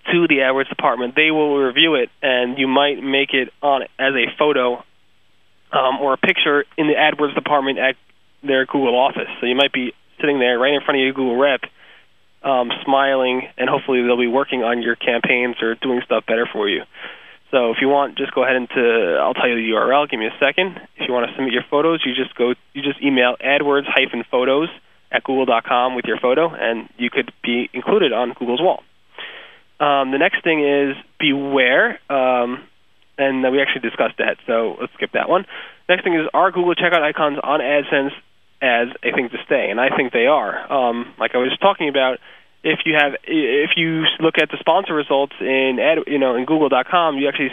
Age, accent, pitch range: 20-39, American, 125-145 Hz